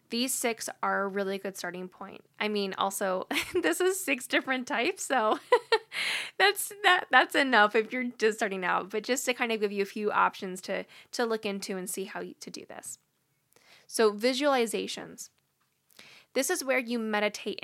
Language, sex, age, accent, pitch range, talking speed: English, female, 10-29, American, 195-235 Hz, 185 wpm